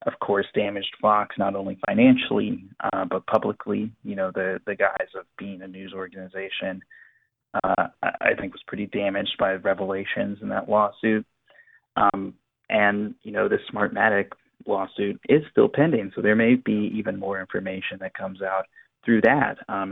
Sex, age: male, 20-39